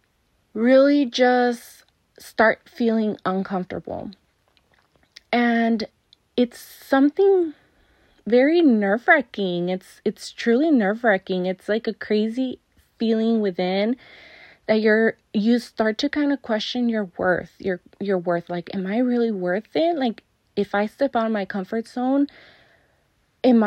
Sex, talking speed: female, 125 wpm